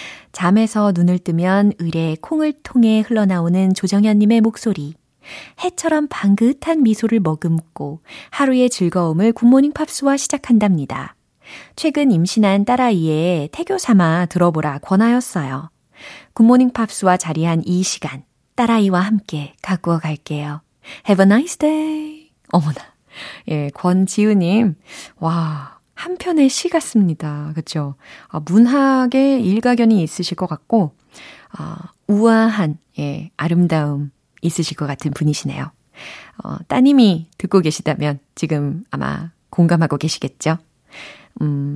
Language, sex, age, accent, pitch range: Korean, female, 20-39, native, 155-225 Hz